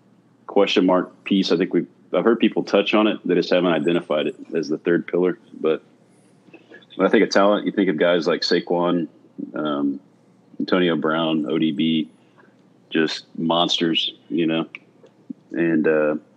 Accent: American